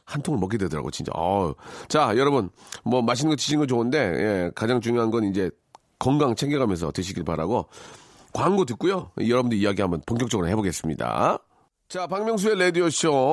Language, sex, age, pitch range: Korean, male, 40-59, 105-170 Hz